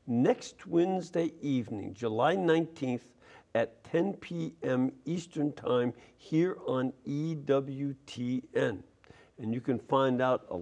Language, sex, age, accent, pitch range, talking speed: English, male, 60-79, American, 120-165 Hz, 105 wpm